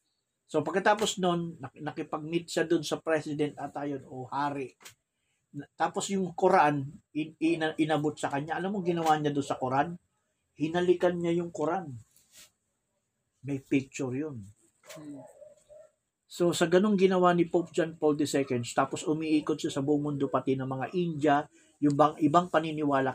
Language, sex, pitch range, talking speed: Filipino, male, 130-165 Hz, 140 wpm